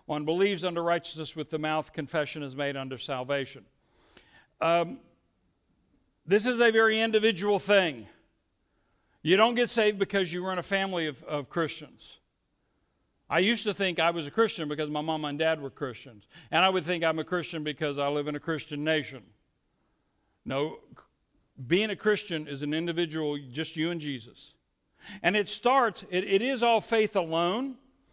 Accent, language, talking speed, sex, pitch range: American, English, 175 wpm, male, 150-210 Hz